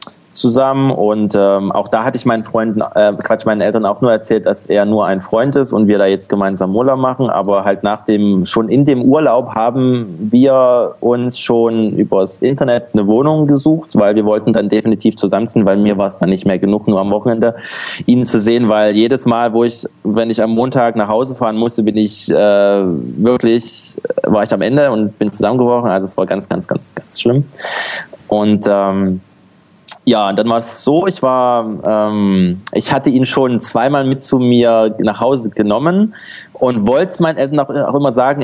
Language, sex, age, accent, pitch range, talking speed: German, male, 20-39, German, 105-130 Hz, 200 wpm